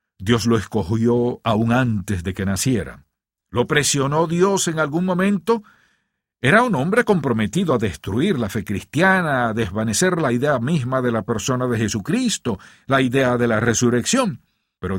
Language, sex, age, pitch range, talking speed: English, male, 50-69, 115-165 Hz, 155 wpm